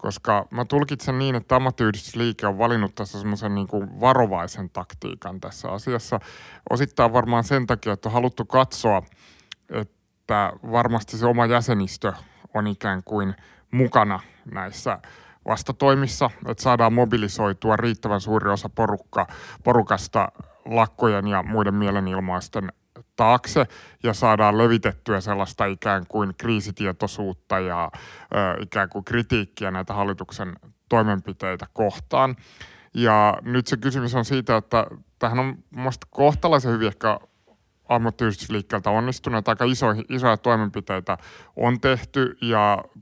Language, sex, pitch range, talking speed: Finnish, male, 105-125 Hz, 115 wpm